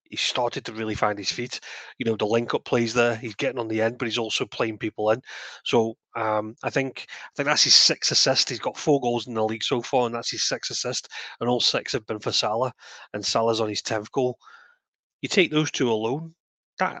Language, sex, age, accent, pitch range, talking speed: English, male, 30-49, British, 110-125 Hz, 240 wpm